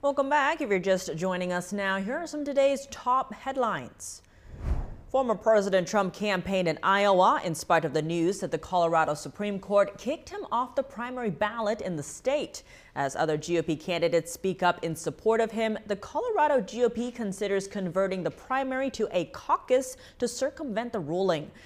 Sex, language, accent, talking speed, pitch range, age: female, English, American, 175 wpm, 175-240 Hz, 30-49